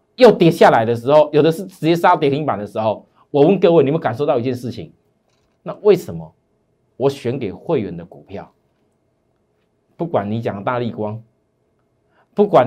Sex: male